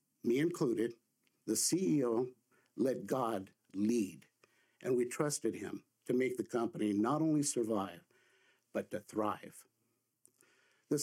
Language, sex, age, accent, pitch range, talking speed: English, male, 60-79, American, 115-145 Hz, 120 wpm